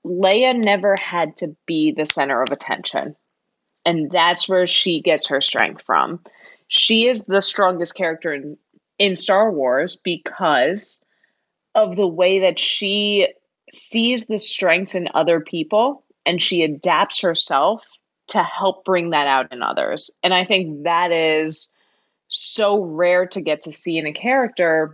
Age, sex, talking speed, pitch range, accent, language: 20-39, female, 150 wpm, 160-205 Hz, American, English